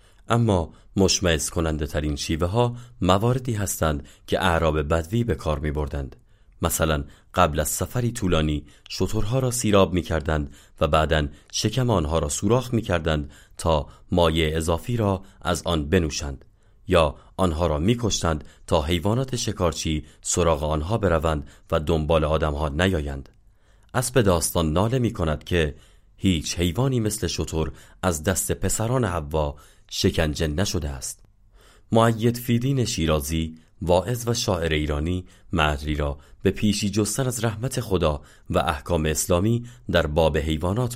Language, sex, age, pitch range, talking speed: Persian, male, 30-49, 80-105 Hz, 130 wpm